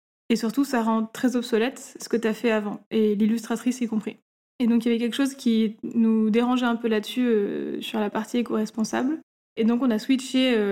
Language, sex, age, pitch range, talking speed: French, female, 20-39, 215-240 Hz, 225 wpm